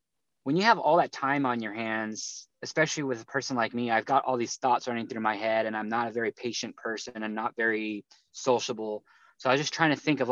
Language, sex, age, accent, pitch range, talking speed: English, male, 20-39, American, 110-130 Hz, 250 wpm